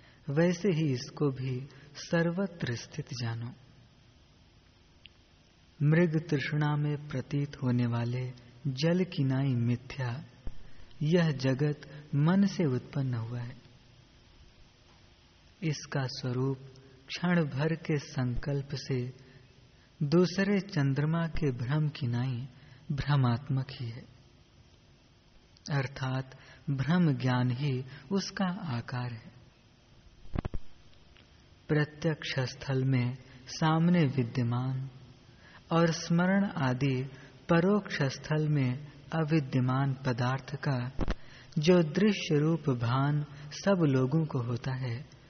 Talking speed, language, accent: 90 wpm, Hindi, native